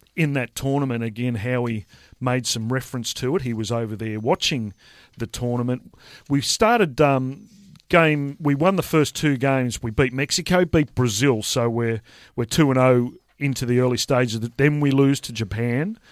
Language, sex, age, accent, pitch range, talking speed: English, male, 40-59, Australian, 115-140 Hz, 175 wpm